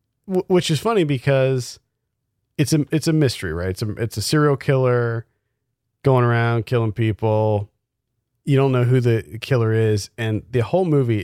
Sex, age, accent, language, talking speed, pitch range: male, 40-59, American, English, 165 wpm, 105-125 Hz